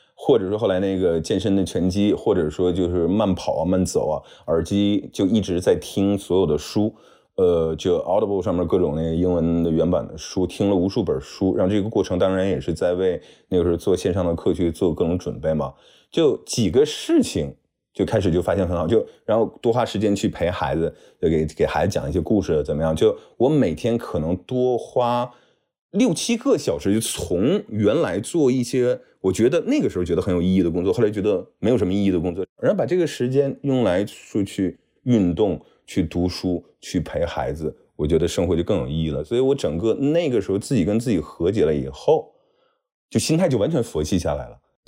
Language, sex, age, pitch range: Chinese, male, 20-39, 90-130 Hz